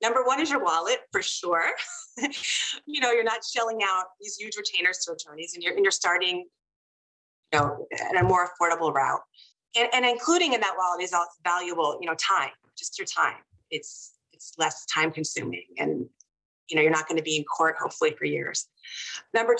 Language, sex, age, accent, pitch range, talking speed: English, female, 30-49, American, 170-250 Hz, 195 wpm